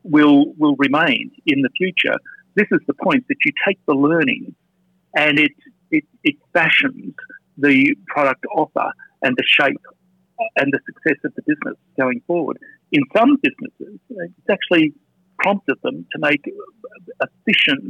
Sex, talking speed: male, 150 wpm